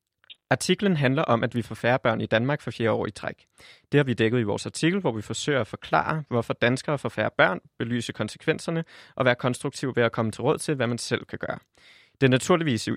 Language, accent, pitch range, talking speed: Danish, native, 110-135 Hz, 235 wpm